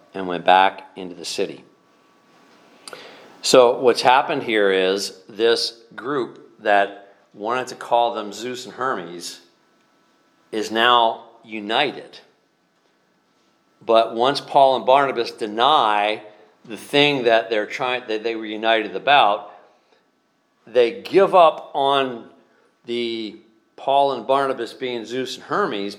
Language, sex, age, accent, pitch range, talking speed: English, male, 50-69, American, 110-135 Hz, 115 wpm